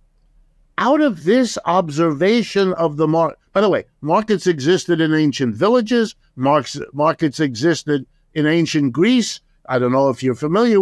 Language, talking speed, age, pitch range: English, 150 wpm, 60-79, 135-170 Hz